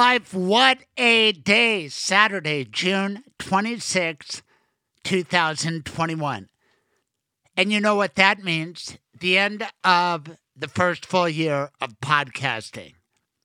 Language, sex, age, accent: English, male, 60-79, American